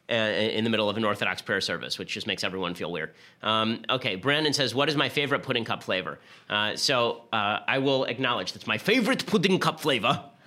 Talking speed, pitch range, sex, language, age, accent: 220 wpm, 115-150 Hz, male, English, 30-49, American